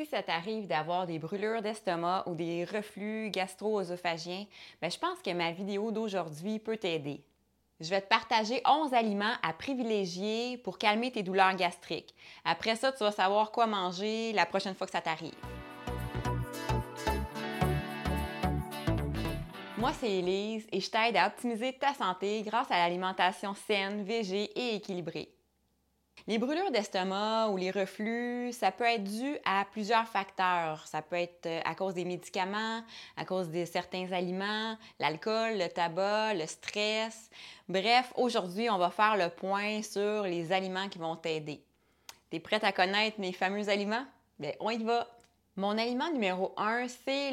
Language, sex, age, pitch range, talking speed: French, female, 20-39, 175-220 Hz, 155 wpm